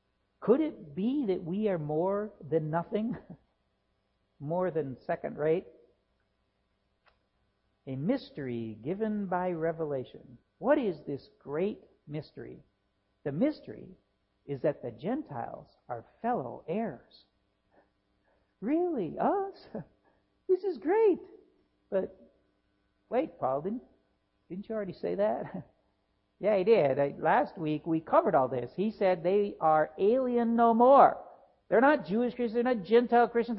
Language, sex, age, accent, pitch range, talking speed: English, male, 60-79, American, 160-245 Hz, 125 wpm